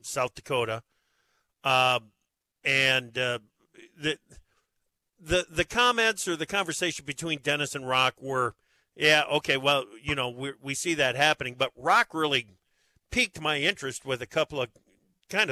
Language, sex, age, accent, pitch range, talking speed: English, male, 50-69, American, 125-150 Hz, 145 wpm